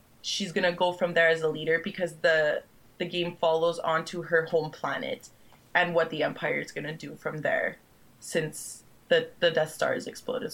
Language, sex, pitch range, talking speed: English, female, 170-200 Hz, 190 wpm